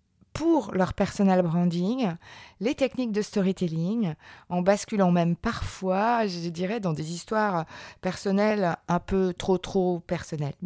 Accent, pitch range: French, 175-225 Hz